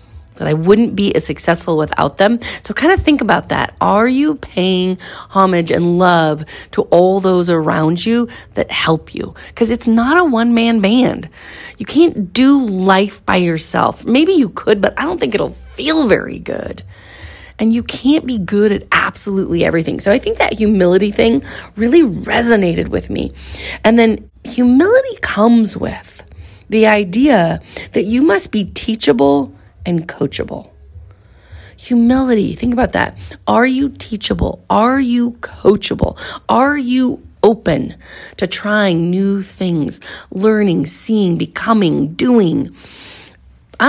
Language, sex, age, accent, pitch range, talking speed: English, female, 30-49, American, 165-230 Hz, 145 wpm